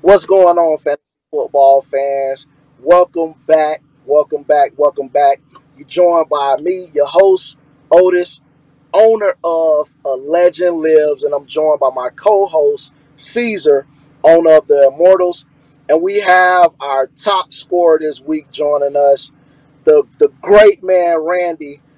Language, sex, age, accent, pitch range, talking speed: English, male, 30-49, American, 140-170 Hz, 135 wpm